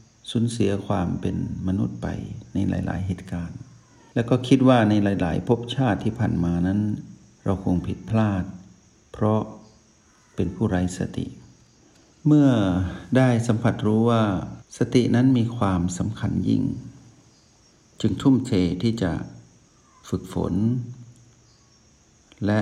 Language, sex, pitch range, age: Thai, male, 90-115 Hz, 60-79